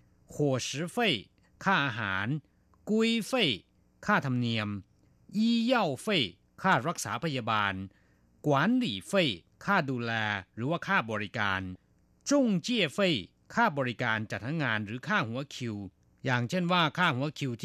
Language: Thai